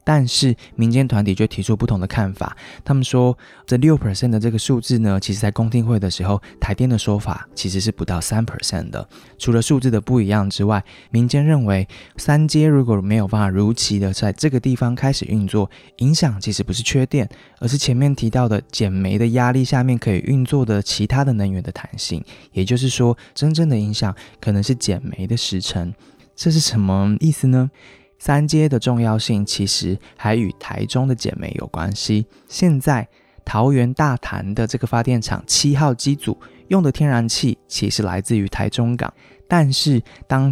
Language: Chinese